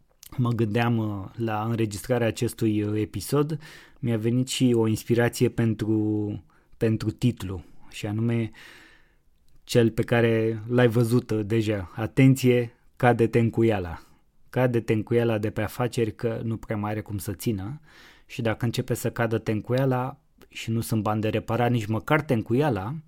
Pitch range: 110-130 Hz